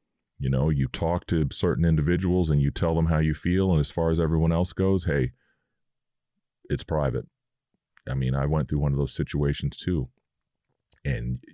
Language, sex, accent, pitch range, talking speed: English, male, American, 70-85 Hz, 180 wpm